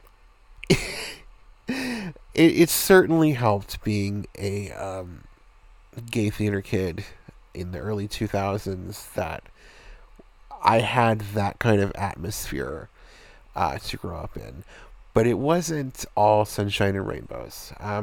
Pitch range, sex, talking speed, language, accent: 100-115 Hz, male, 110 wpm, English, American